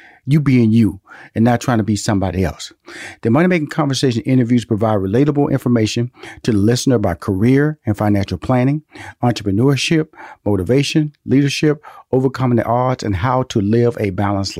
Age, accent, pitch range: 40-59, American, 115-160 Hz